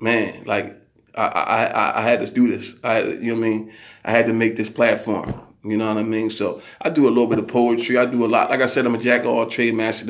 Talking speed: 290 wpm